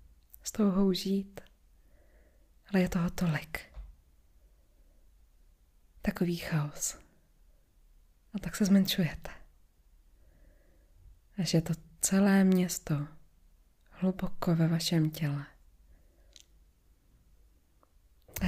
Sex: female